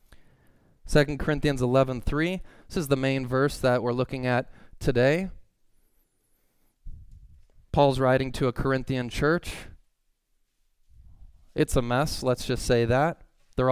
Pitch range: 115-145 Hz